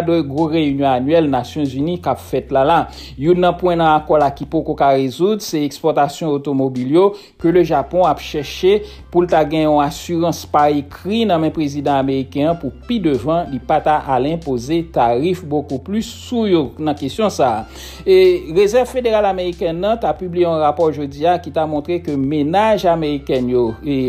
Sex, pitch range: male, 140-175 Hz